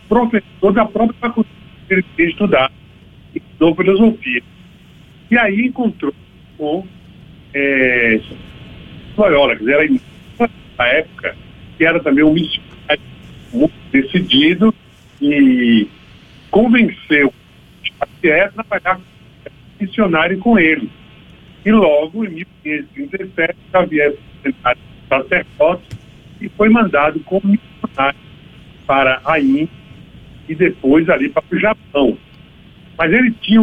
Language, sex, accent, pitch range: Portuguese, male, Brazilian, 145-220 Hz